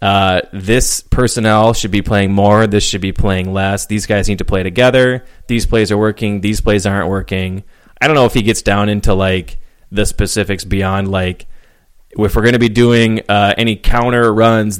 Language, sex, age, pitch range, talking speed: English, male, 20-39, 100-115 Hz, 200 wpm